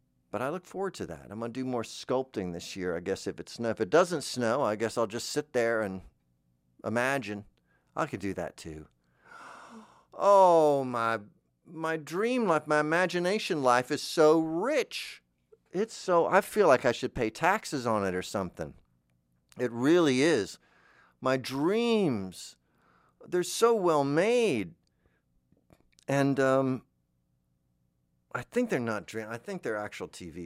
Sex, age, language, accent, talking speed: male, 50-69, English, American, 155 wpm